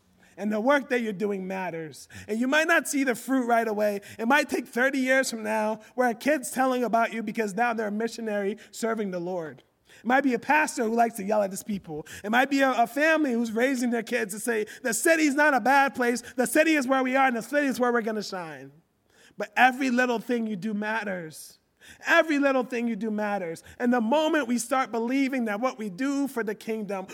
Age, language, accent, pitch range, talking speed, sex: 30-49, English, American, 195-260 Hz, 235 wpm, male